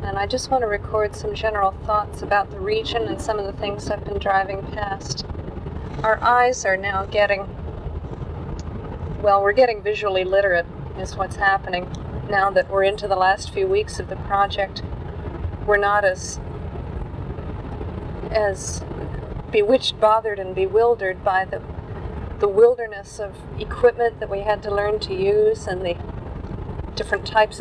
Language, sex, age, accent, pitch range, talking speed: English, female, 40-59, American, 190-240 Hz, 150 wpm